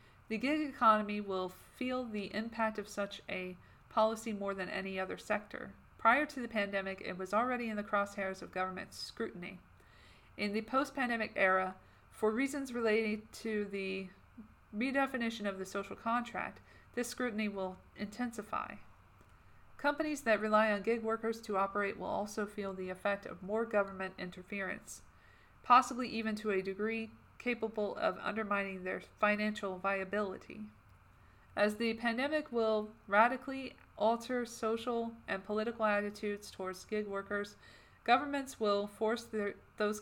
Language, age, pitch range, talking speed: English, 40-59, 190-225 Hz, 140 wpm